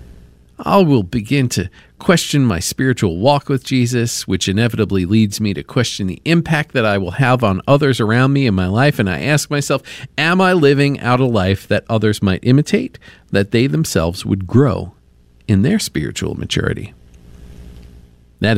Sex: male